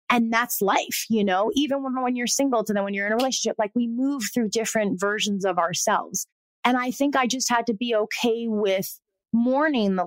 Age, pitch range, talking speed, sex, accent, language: 20-39, 205-265 Hz, 220 wpm, female, American, English